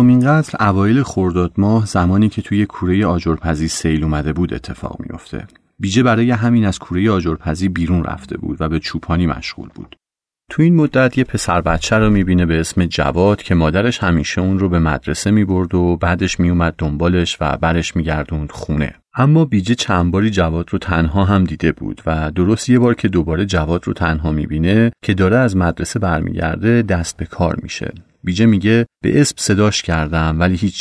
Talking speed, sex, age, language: 185 wpm, male, 30-49, Persian